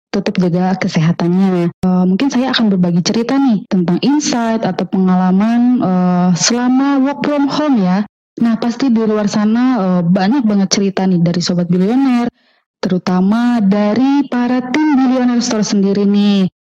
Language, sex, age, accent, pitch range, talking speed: Indonesian, female, 20-39, native, 190-255 Hz, 145 wpm